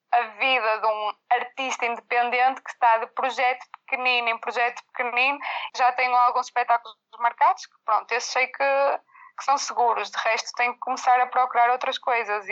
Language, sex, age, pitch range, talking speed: Portuguese, female, 20-39, 225-270 Hz, 175 wpm